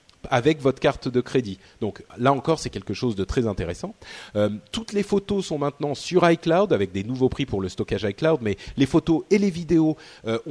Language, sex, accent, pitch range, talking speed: French, male, French, 110-150 Hz, 210 wpm